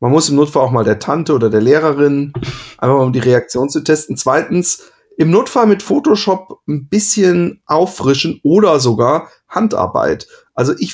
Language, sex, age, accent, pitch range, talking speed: German, male, 30-49, German, 125-170 Hz, 170 wpm